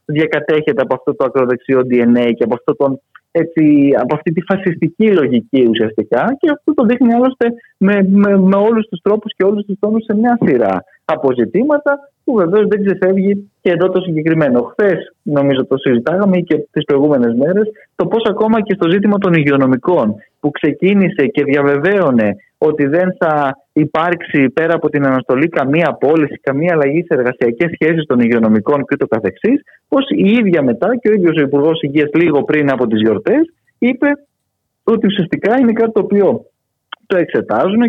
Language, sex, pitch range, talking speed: Greek, male, 140-215 Hz, 165 wpm